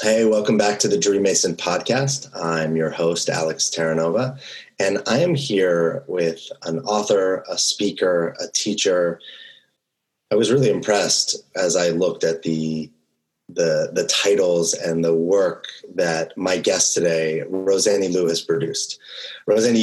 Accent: American